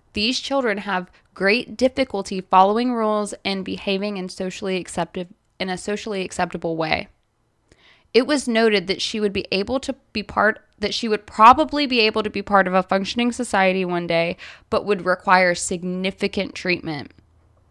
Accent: American